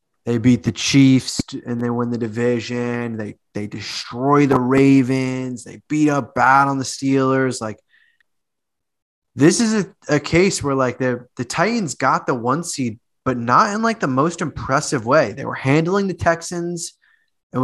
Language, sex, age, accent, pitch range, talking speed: English, male, 20-39, American, 120-150 Hz, 170 wpm